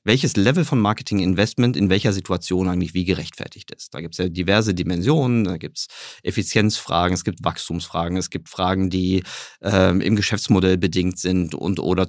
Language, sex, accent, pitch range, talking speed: German, male, German, 90-115 Hz, 175 wpm